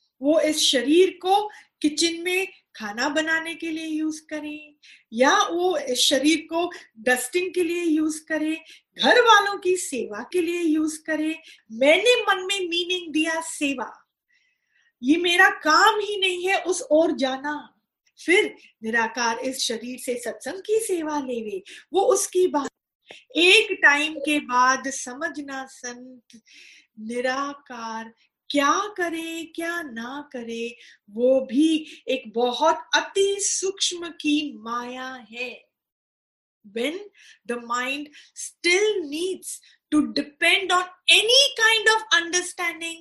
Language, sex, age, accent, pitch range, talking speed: Hindi, female, 30-49, native, 260-365 Hz, 125 wpm